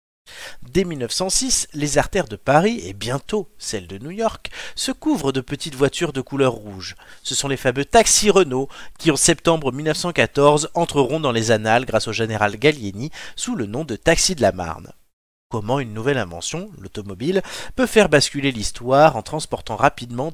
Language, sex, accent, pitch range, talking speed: French, male, French, 115-155 Hz, 170 wpm